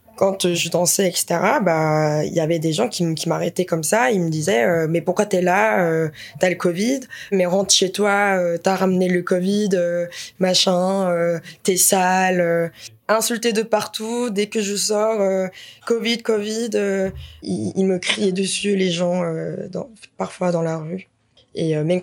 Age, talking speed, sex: 20-39, 160 wpm, female